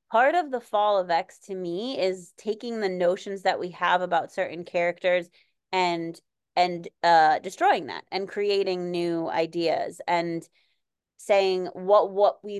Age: 20-39